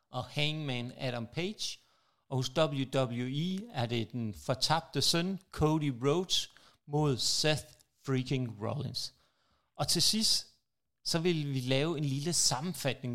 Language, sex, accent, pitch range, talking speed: Danish, male, native, 125-160 Hz, 130 wpm